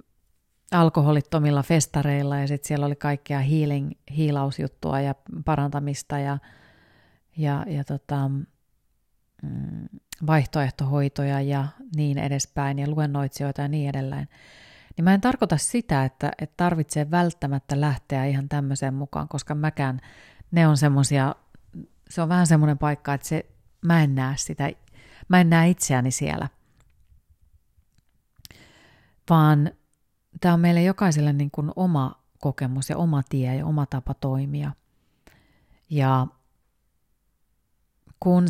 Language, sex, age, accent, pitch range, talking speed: Finnish, female, 30-49, native, 135-150 Hz, 115 wpm